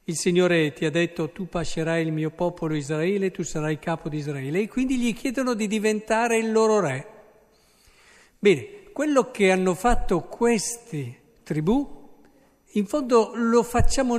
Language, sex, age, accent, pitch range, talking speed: Italian, male, 50-69, native, 160-225 Hz, 155 wpm